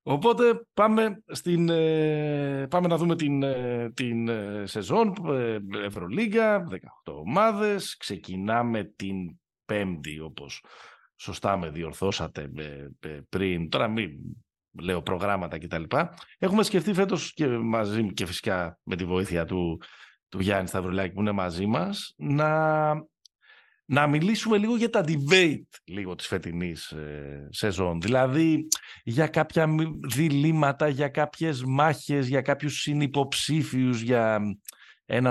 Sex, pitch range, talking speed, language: male, 100-160 Hz, 110 wpm, Greek